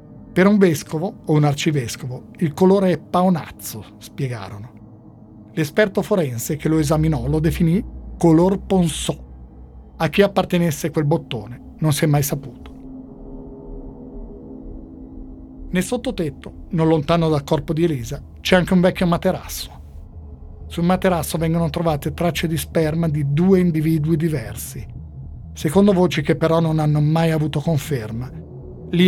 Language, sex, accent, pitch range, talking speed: Italian, male, native, 135-175 Hz, 130 wpm